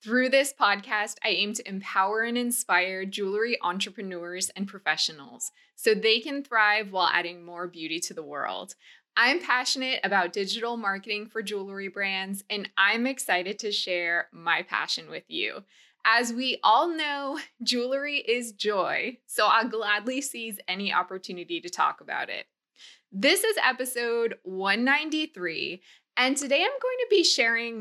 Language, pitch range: English, 195-255 Hz